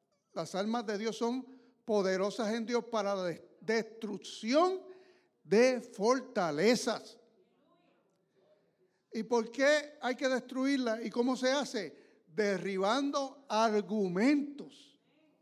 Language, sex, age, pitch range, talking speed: English, male, 60-79, 185-255 Hz, 95 wpm